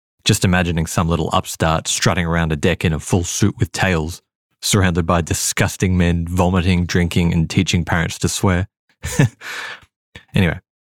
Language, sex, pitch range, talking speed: English, male, 90-115 Hz, 150 wpm